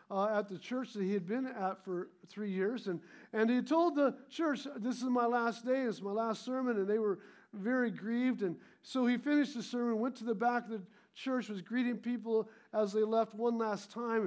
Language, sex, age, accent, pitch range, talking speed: English, male, 50-69, American, 200-245 Hz, 230 wpm